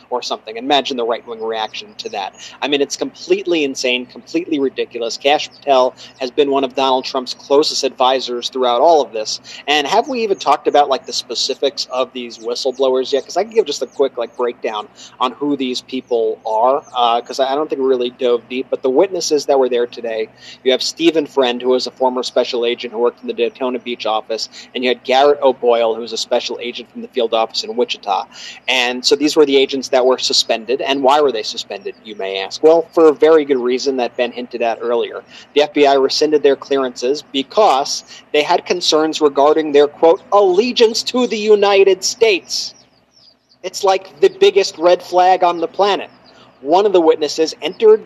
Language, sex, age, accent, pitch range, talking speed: English, male, 30-49, American, 125-175 Hz, 205 wpm